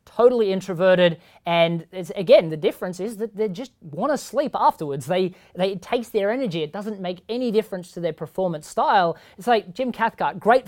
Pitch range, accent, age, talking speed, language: 175-225 Hz, Australian, 20-39, 195 wpm, English